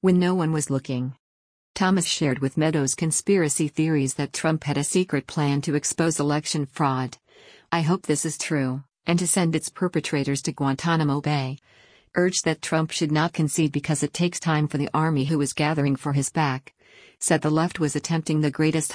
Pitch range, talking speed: 145-165 Hz, 190 wpm